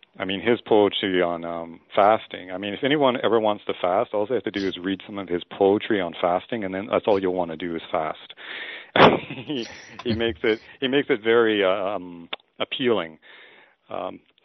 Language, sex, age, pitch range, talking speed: English, male, 40-59, 85-110 Hz, 210 wpm